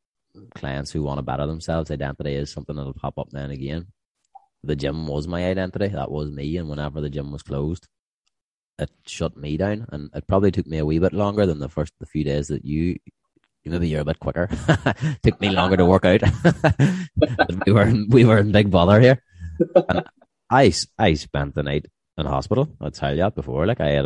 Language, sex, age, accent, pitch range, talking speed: English, male, 20-39, Irish, 70-95 Hz, 205 wpm